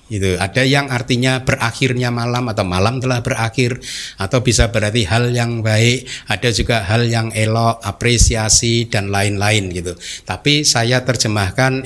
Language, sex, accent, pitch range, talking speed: Indonesian, male, native, 105-130 Hz, 140 wpm